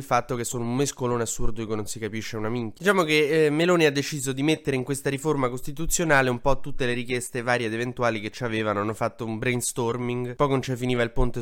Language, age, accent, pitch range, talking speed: Italian, 20-39, native, 115-135 Hz, 235 wpm